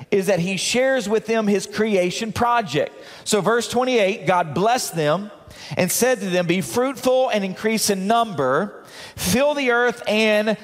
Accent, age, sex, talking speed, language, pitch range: American, 40-59, male, 165 wpm, English, 190-235 Hz